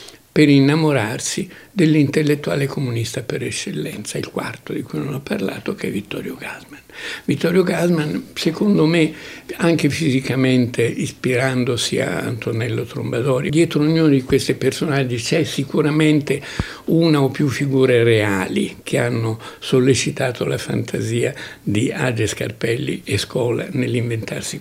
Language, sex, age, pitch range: Italian, male, 60-79, 120-155 Hz